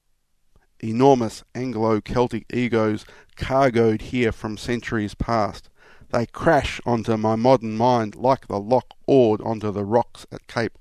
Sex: male